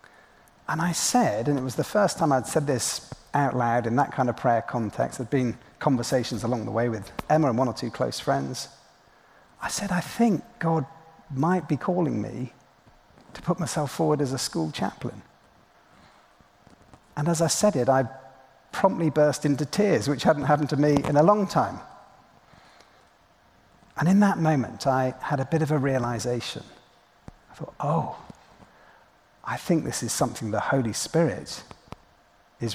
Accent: British